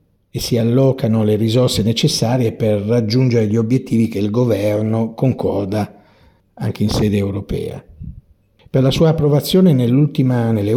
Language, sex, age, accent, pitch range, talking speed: Italian, male, 50-69, native, 110-145 Hz, 130 wpm